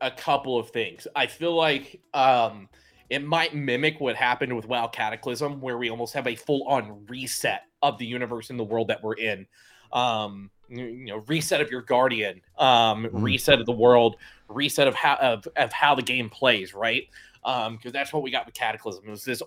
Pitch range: 120-145 Hz